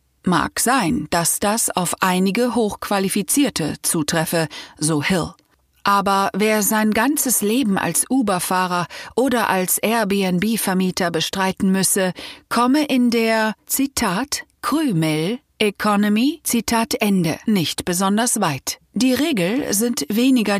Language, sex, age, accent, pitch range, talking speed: German, female, 40-59, German, 170-230 Hz, 110 wpm